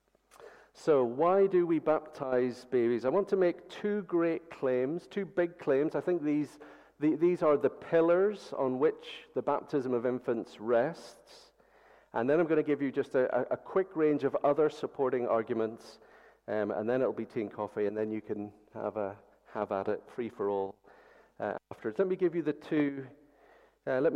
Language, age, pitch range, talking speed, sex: English, 50-69, 120-155 Hz, 190 wpm, male